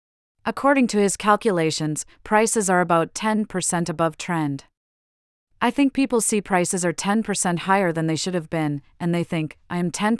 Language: English